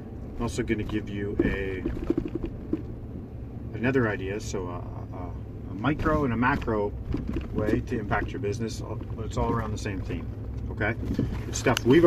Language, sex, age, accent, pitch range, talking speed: English, male, 40-59, American, 100-120 Hz, 160 wpm